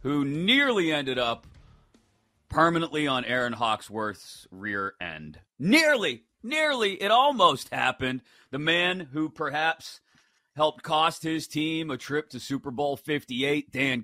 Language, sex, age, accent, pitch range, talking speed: English, male, 40-59, American, 125-150 Hz, 130 wpm